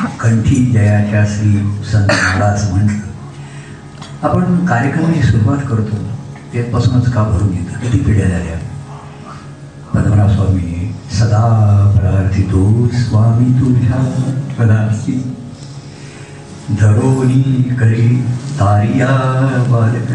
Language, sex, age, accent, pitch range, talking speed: Marathi, male, 50-69, native, 100-130 Hz, 60 wpm